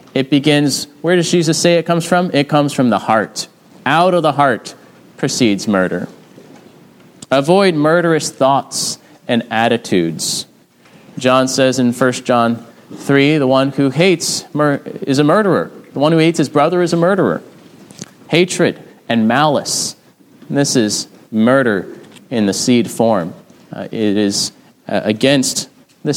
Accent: American